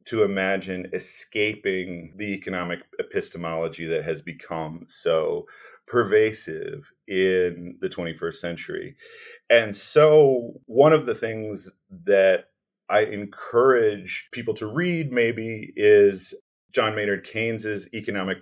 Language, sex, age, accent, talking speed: English, male, 40-59, American, 110 wpm